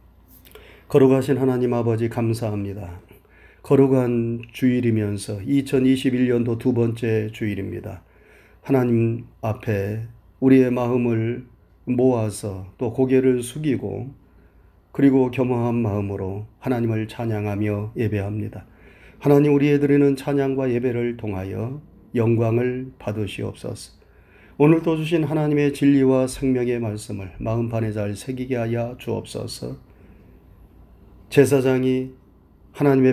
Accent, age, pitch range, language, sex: native, 40-59, 100-140 Hz, Korean, male